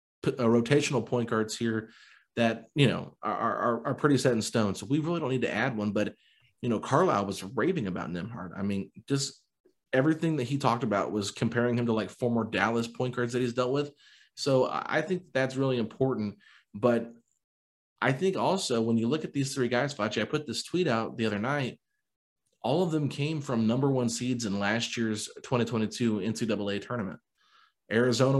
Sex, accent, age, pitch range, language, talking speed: male, American, 30-49, 110-130 Hz, English, 195 wpm